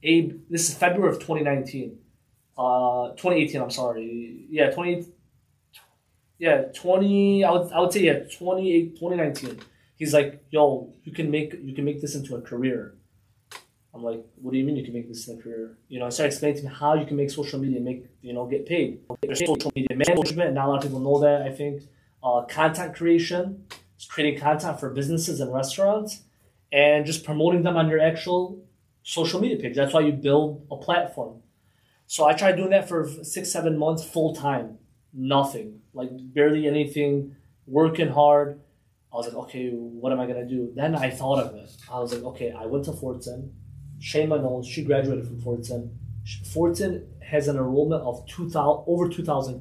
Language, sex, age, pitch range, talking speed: English, male, 20-39, 125-160 Hz, 190 wpm